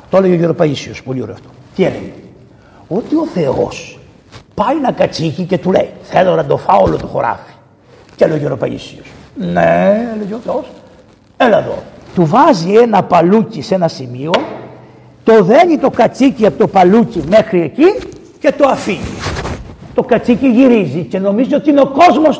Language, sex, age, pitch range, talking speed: Greek, male, 60-79, 160-265 Hz, 170 wpm